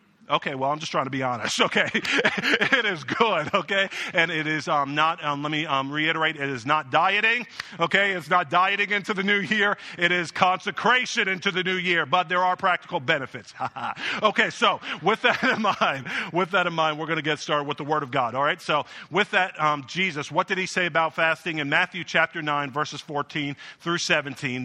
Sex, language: male, English